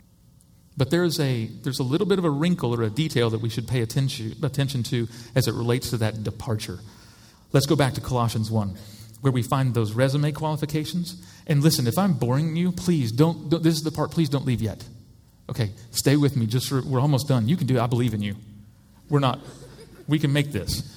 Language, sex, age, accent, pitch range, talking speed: English, male, 40-59, American, 120-160 Hz, 225 wpm